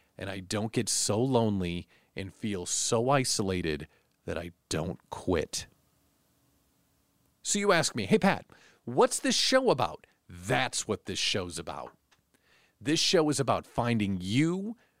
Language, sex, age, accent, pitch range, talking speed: English, male, 40-59, American, 95-145 Hz, 140 wpm